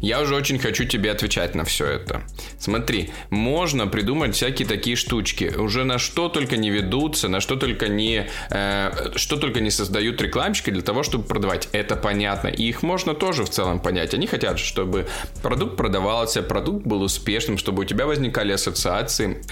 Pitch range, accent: 100-130 Hz, native